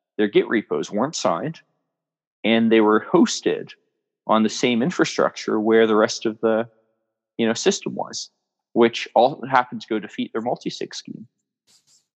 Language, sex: English, male